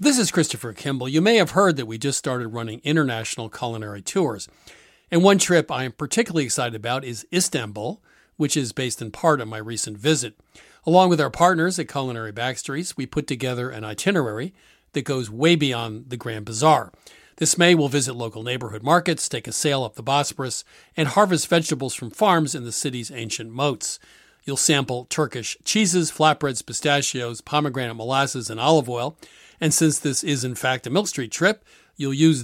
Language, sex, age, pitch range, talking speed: English, male, 40-59, 120-160 Hz, 185 wpm